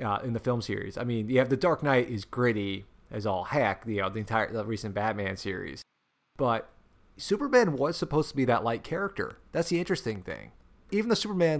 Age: 30-49